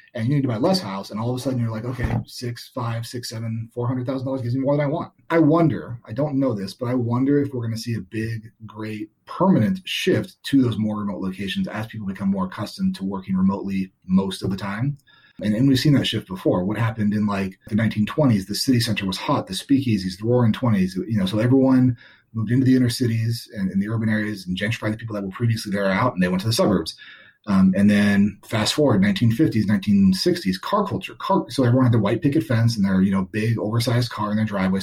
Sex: male